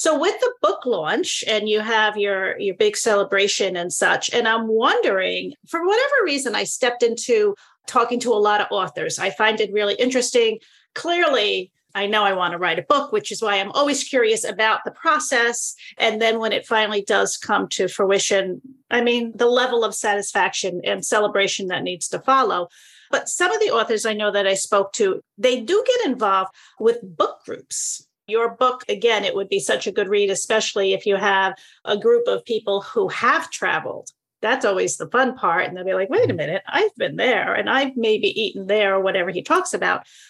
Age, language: 40-59, English